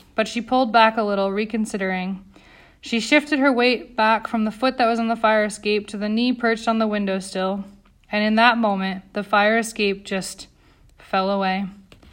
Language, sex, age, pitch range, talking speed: English, female, 20-39, 210-240 Hz, 195 wpm